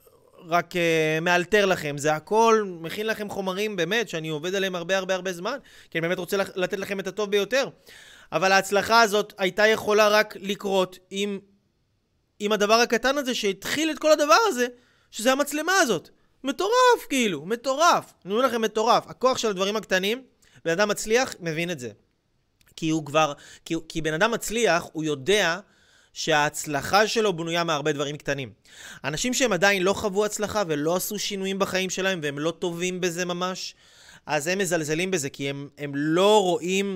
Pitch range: 165-210 Hz